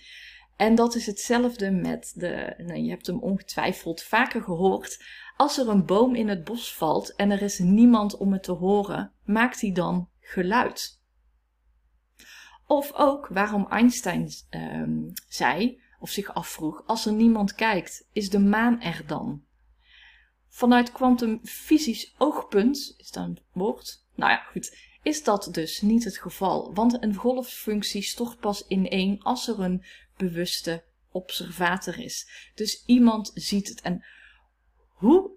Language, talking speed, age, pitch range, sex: Dutch, 145 wpm, 30-49, 185-245 Hz, female